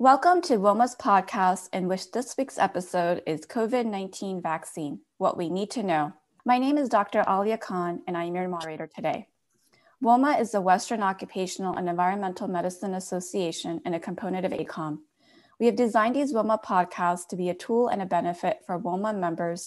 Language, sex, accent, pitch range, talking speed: English, female, American, 170-210 Hz, 180 wpm